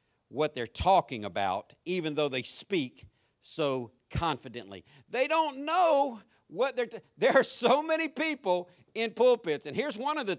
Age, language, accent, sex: 50-69, English, American, male